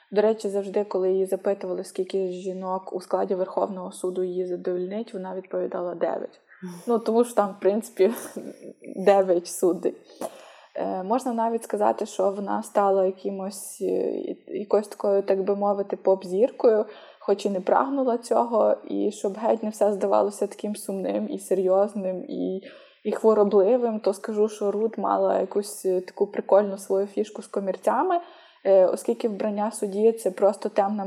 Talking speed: 145 wpm